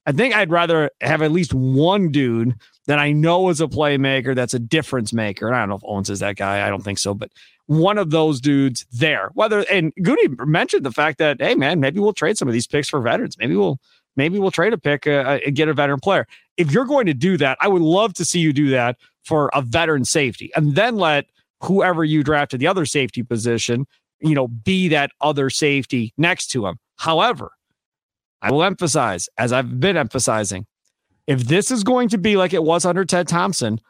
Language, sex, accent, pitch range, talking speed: English, male, American, 135-185 Hz, 225 wpm